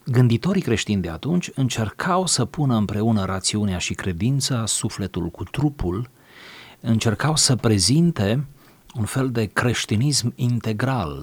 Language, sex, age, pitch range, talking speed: Romanian, male, 40-59, 90-115 Hz, 120 wpm